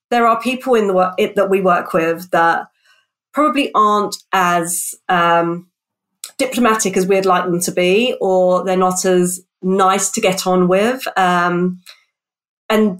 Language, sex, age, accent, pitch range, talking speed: English, female, 30-49, British, 180-225 Hz, 155 wpm